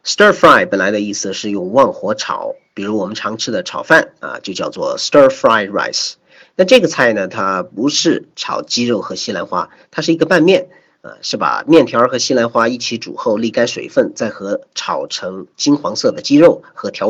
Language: Chinese